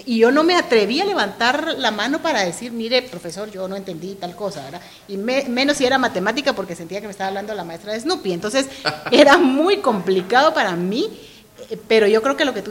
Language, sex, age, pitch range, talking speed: Spanish, female, 40-59, 185-260 Hz, 220 wpm